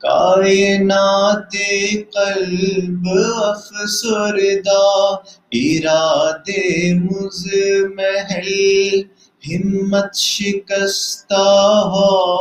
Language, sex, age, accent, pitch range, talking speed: English, male, 30-49, Indian, 195-215 Hz, 50 wpm